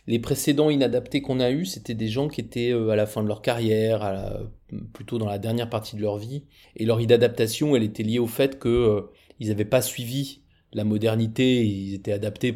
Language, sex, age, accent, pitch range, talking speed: French, male, 30-49, French, 110-130 Hz, 215 wpm